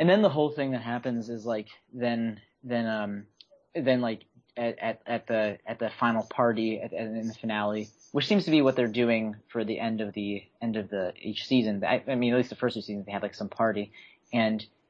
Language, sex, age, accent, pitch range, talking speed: English, male, 30-49, American, 110-125 Hz, 240 wpm